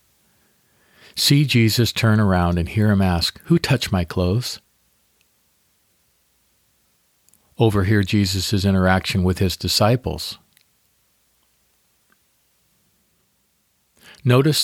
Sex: male